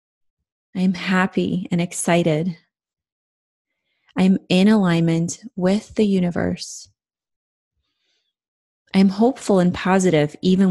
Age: 30-49